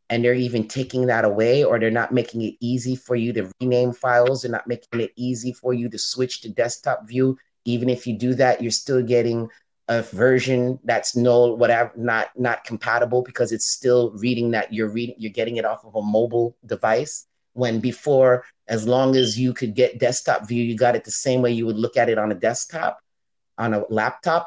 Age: 30-49